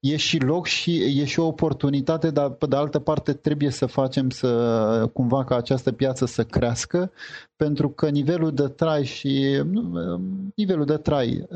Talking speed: 165 wpm